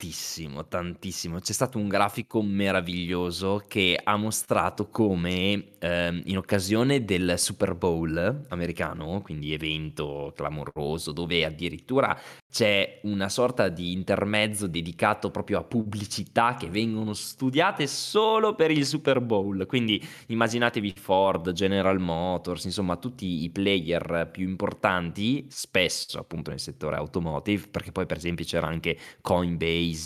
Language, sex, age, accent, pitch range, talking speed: Italian, male, 20-39, native, 85-105 Hz, 125 wpm